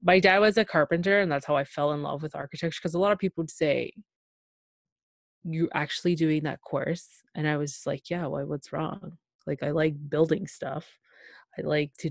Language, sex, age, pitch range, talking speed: English, female, 20-39, 150-175 Hz, 215 wpm